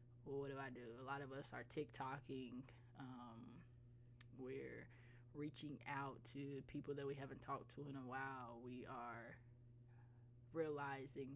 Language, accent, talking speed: English, American, 150 wpm